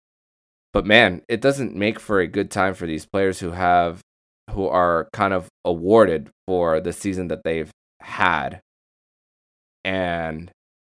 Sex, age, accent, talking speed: male, 20-39, American, 140 wpm